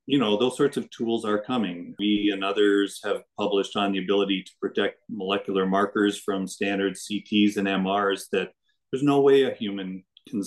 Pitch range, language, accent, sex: 100-115 Hz, English, American, male